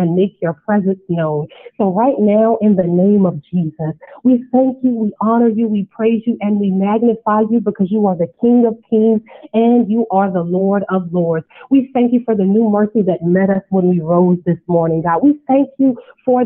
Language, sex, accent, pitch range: English, female, American, 185-230 Hz